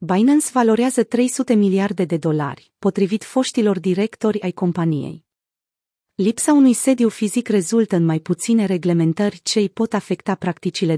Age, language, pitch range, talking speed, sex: 30-49, Romanian, 175-225 Hz, 135 wpm, female